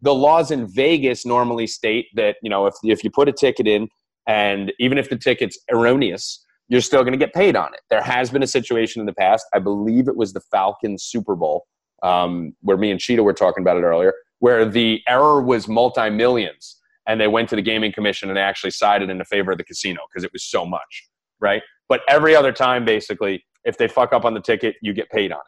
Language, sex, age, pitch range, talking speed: English, male, 30-49, 105-150 Hz, 235 wpm